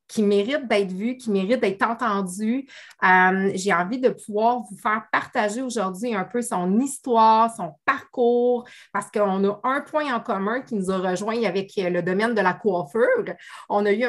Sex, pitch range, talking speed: female, 190-235 Hz, 180 wpm